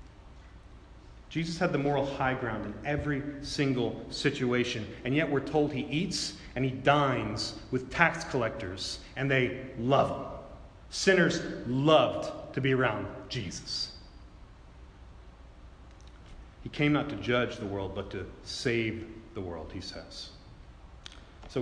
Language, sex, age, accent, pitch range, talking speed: English, male, 40-59, American, 105-140 Hz, 130 wpm